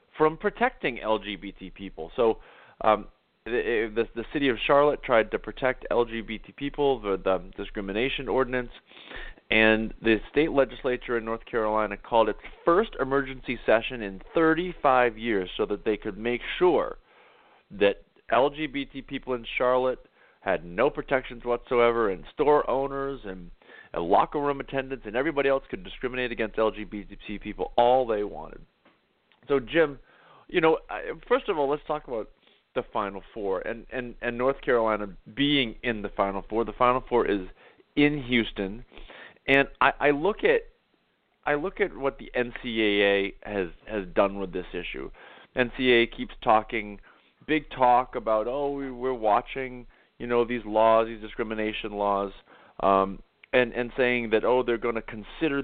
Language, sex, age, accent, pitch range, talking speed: English, male, 30-49, American, 110-135 Hz, 155 wpm